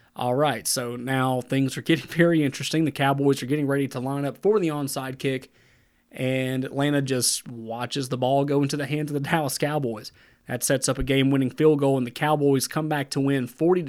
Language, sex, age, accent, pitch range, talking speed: English, male, 30-49, American, 125-150 Hz, 215 wpm